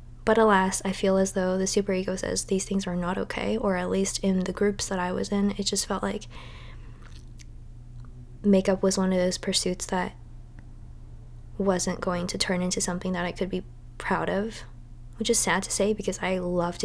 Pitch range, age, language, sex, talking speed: 170-200 Hz, 20-39, English, female, 195 wpm